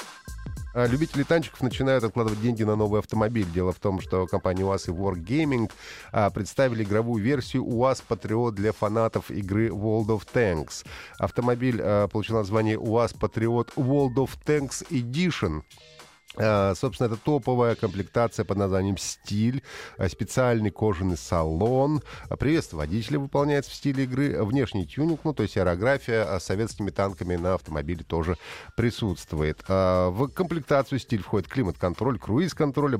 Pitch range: 95-130 Hz